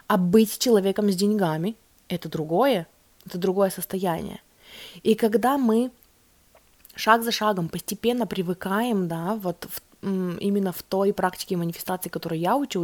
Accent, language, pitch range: native, Russian, 175-215 Hz